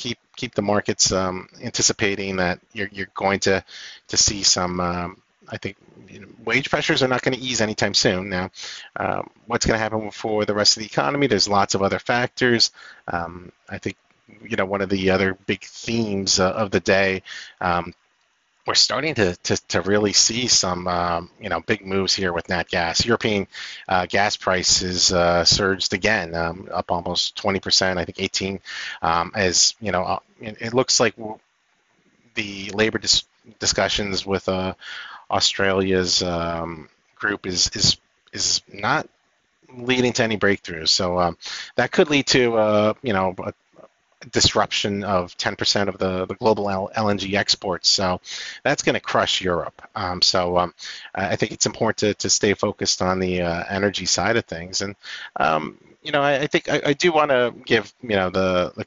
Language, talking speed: English, 180 wpm